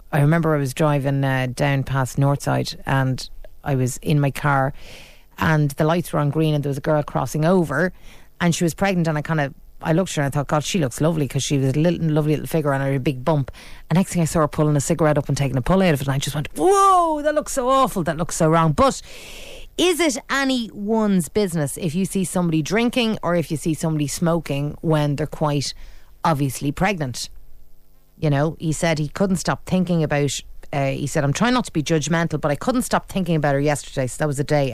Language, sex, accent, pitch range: English, female, Irish, 145-190 Hz